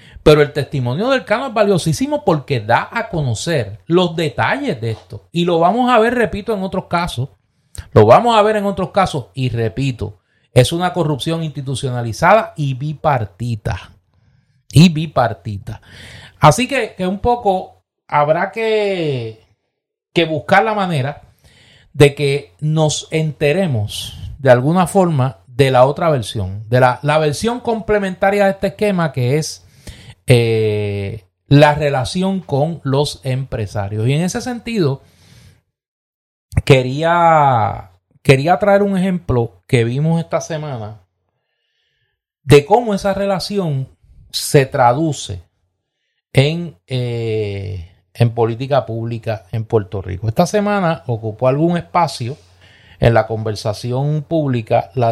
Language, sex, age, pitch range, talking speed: Spanish, male, 30-49, 115-170 Hz, 125 wpm